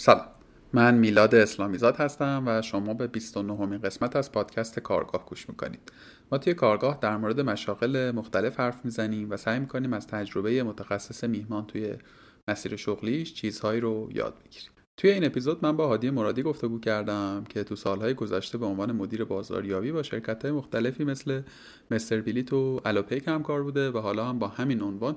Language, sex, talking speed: Persian, male, 170 wpm